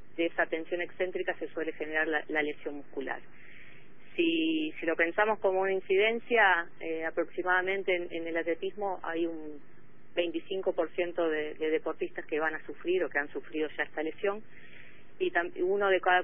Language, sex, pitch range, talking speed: Spanish, female, 160-185 Hz, 165 wpm